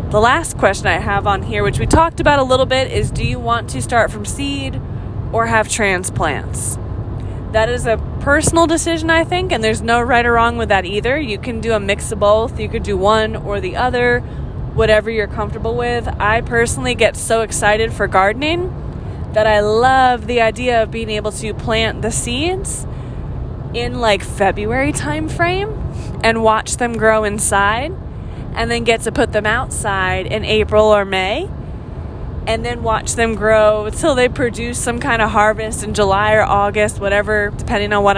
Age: 20-39